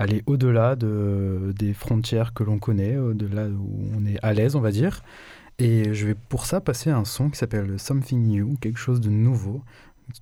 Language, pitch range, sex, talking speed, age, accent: French, 105-130 Hz, male, 205 wpm, 20-39, French